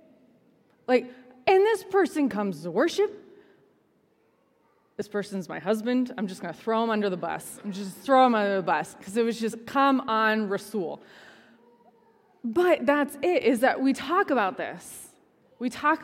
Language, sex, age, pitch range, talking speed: English, female, 20-39, 195-250 Hz, 170 wpm